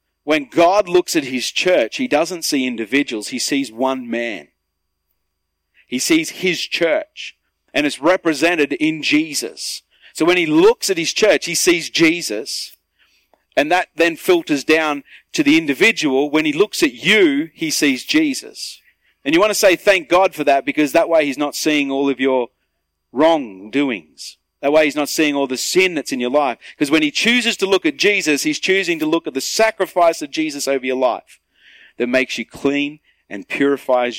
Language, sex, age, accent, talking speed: English, male, 40-59, Australian, 185 wpm